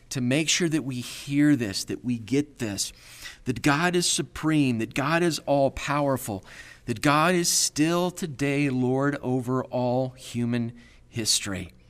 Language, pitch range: English, 120-160 Hz